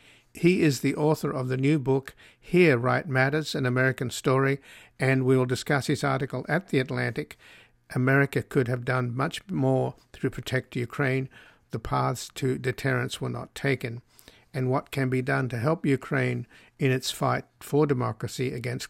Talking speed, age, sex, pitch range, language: 170 wpm, 50-69, male, 125-145 Hz, English